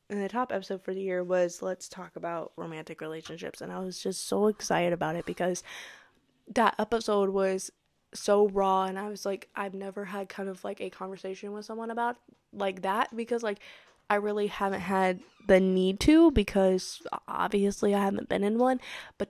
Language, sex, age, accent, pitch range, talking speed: English, female, 10-29, American, 185-210 Hz, 190 wpm